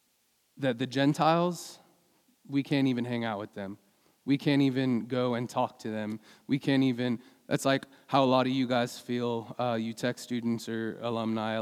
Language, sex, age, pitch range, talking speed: English, male, 20-39, 115-140 Hz, 185 wpm